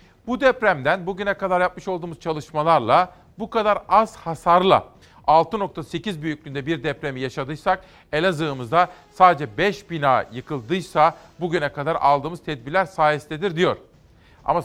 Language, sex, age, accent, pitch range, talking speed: Turkish, male, 50-69, native, 150-185 Hz, 115 wpm